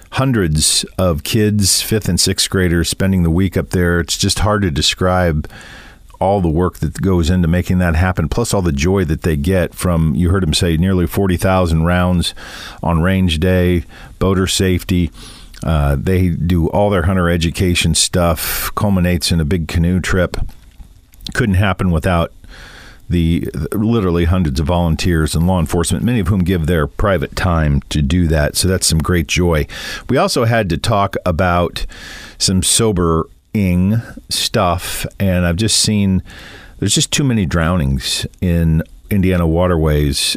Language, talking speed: English, 160 wpm